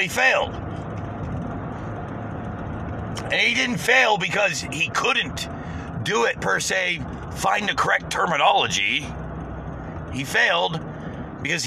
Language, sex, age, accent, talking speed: English, male, 50-69, American, 105 wpm